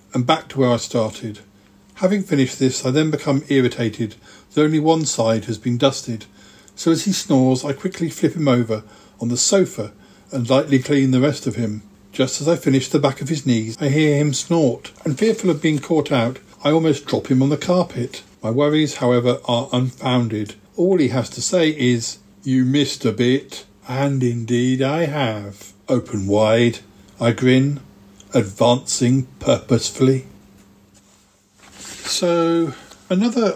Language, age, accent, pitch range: English, 50-69, British, 115-145 Hz